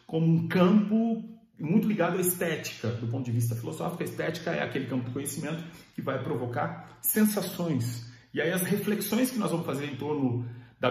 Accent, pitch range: Brazilian, 120-175 Hz